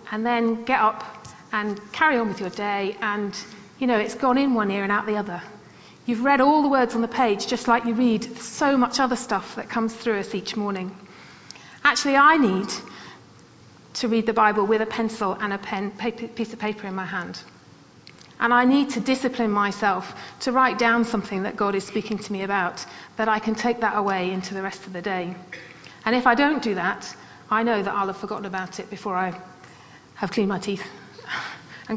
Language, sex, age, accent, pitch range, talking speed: English, female, 40-59, British, 200-240 Hz, 215 wpm